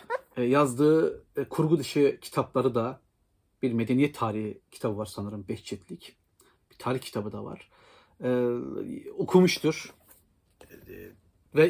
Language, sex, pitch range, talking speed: Turkish, male, 120-175 Hz, 95 wpm